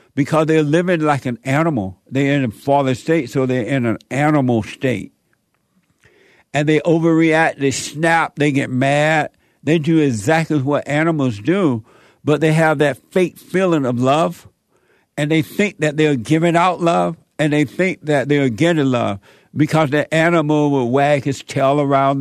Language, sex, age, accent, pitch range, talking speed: English, male, 60-79, American, 135-160 Hz, 170 wpm